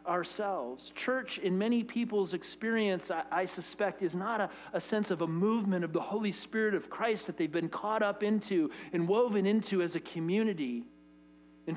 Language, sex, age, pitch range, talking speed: English, male, 40-59, 165-215 Hz, 185 wpm